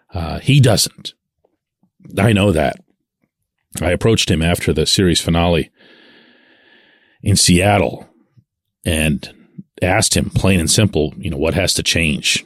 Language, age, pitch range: English, 40-59, 90-120 Hz